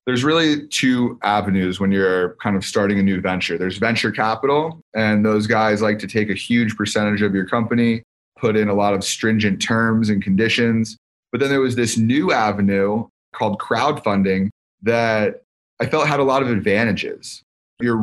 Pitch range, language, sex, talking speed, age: 100-120 Hz, English, male, 180 wpm, 30-49